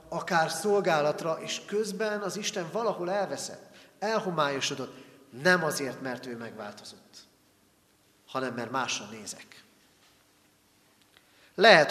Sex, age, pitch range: male, 40-59, 125-180 Hz